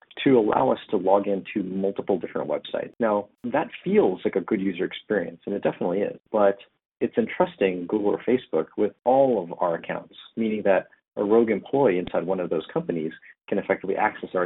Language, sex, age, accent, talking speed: English, male, 40-59, American, 190 wpm